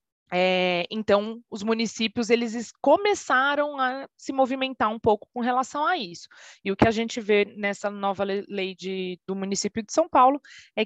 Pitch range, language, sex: 180-225 Hz, Portuguese, female